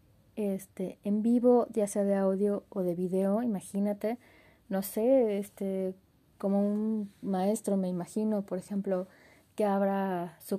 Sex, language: female, Spanish